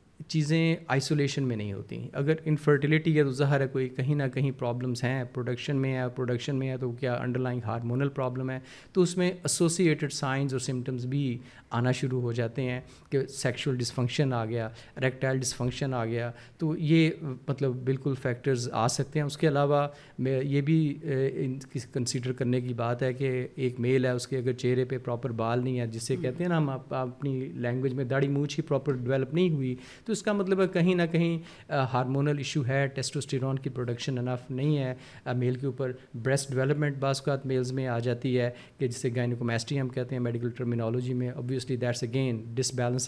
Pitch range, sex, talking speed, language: 125-140 Hz, male, 180 wpm, Urdu